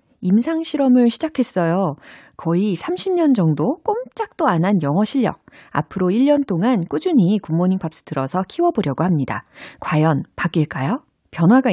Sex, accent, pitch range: female, native, 155-245 Hz